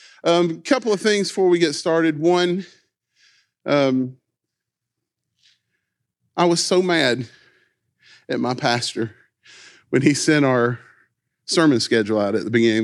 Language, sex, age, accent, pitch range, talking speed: English, male, 40-59, American, 115-175 Hz, 130 wpm